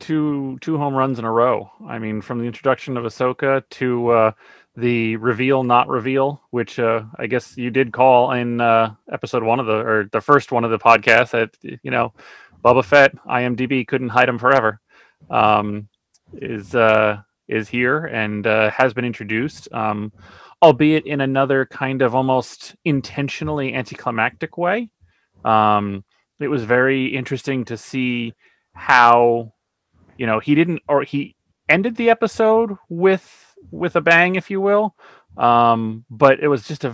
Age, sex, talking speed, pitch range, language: 30-49, male, 160 wpm, 110-135 Hz, English